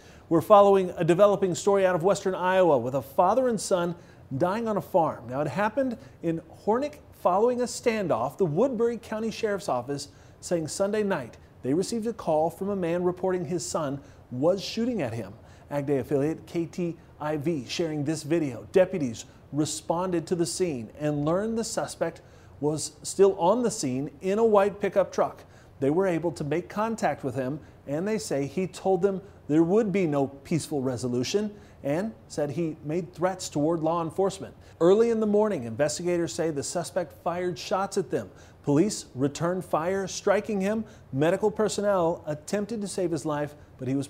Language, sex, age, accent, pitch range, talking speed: English, male, 30-49, American, 140-190 Hz, 175 wpm